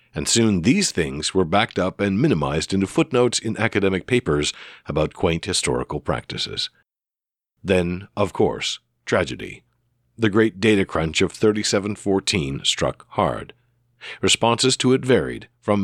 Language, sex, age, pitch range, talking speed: English, male, 50-69, 95-120 Hz, 135 wpm